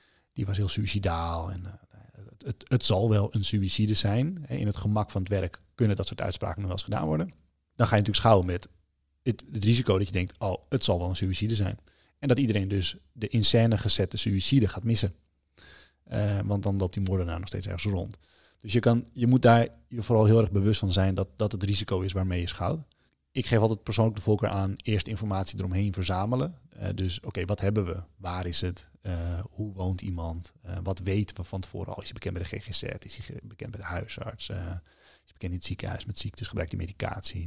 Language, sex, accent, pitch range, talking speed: Dutch, male, Dutch, 95-110 Hz, 235 wpm